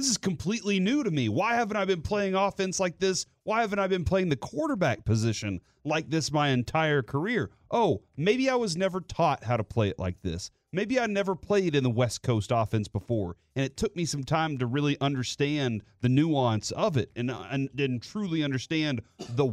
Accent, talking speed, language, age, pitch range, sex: American, 210 wpm, English, 30-49, 125-175 Hz, male